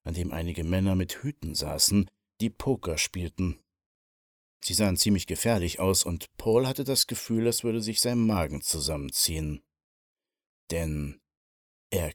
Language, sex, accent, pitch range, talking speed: German, male, German, 85-110 Hz, 140 wpm